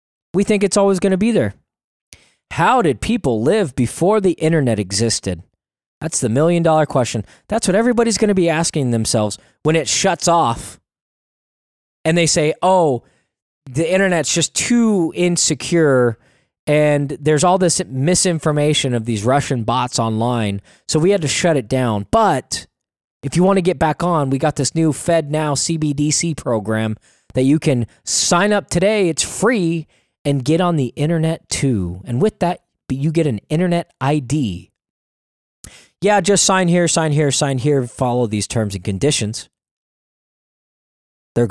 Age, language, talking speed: 20-39, English, 160 wpm